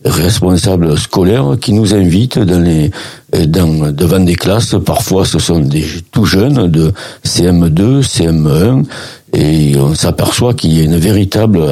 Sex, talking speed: male, 150 wpm